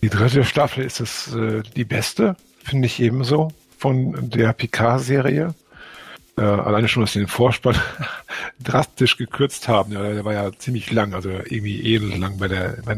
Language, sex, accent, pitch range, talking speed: German, male, German, 110-130 Hz, 170 wpm